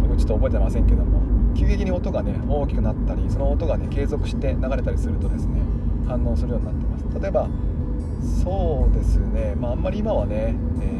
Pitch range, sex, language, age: 80-100 Hz, male, Japanese, 20-39